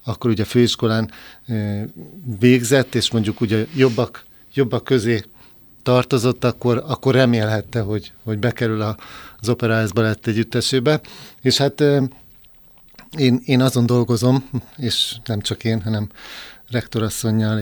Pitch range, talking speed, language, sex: 110-120 Hz, 115 wpm, Hungarian, male